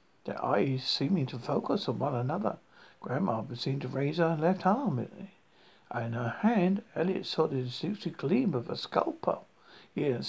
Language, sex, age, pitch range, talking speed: English, male, 60-79, 130-195 Hz, 170 wpm